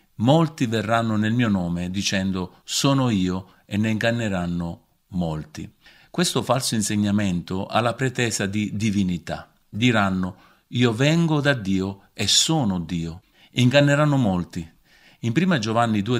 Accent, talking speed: native, 125 wpm